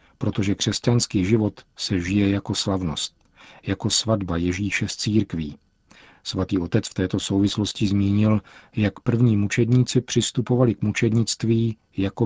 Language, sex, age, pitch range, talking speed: Czech, male, 50-69, 95-115 Hz, 120 wpm